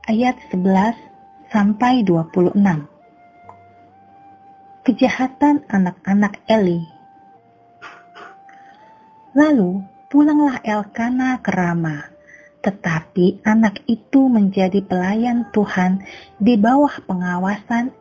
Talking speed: 65 wpm